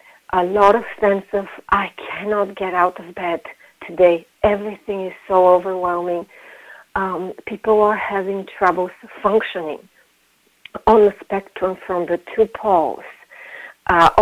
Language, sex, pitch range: English, female, 180-215 Hz